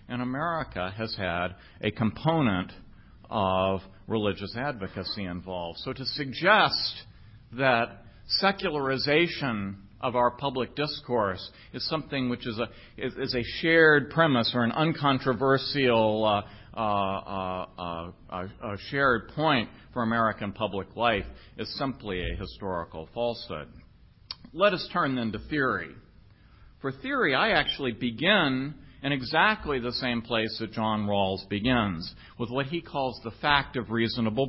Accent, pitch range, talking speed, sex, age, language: American, 105-140 Hz, 135 wpm, male, 50-69, English